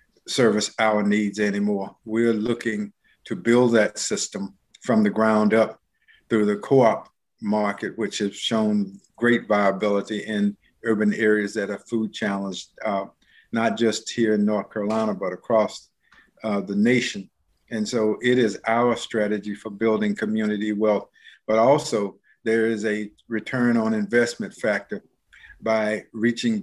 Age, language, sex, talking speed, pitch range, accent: 50-69, English, male, 140 wpm, 105-115 Hz, American